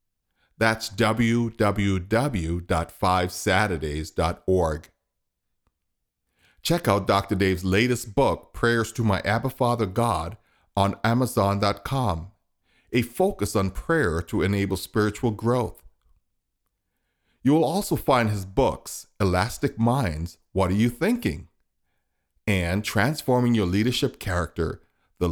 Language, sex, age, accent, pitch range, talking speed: English, male, 50-69, American, 90-115 Hz, 100 wpm